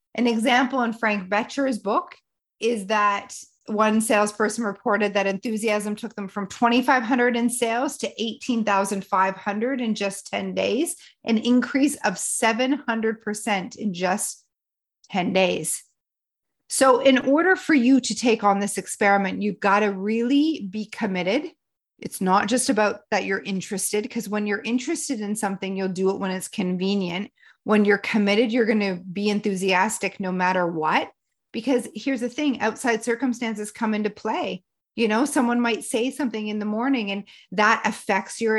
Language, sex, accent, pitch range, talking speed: English, female, American, 205-245 Hz, 155 wpm